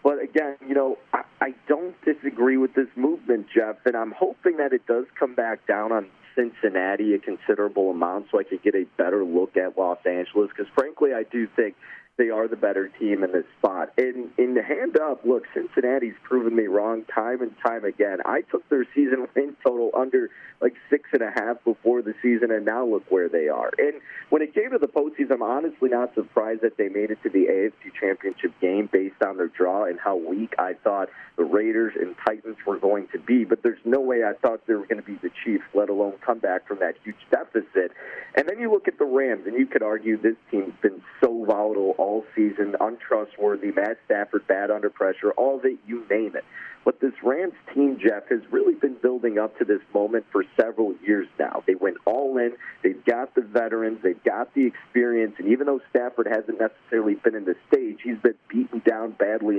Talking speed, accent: 220 wpm, American